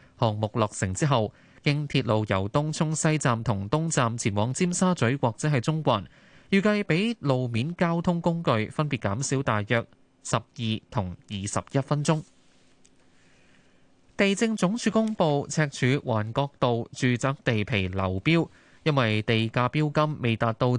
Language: Chinese